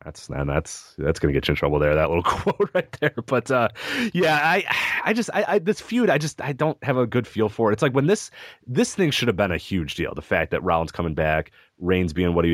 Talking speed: 285 wpm